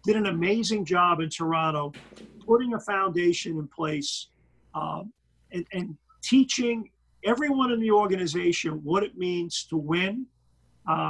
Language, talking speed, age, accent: English, 135 wpm, 50-69, American